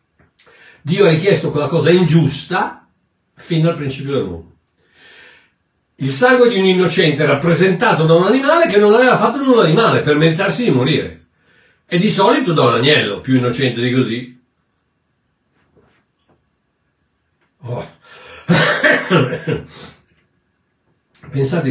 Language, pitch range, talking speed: Italian, 125-160 Hz, 120 wpm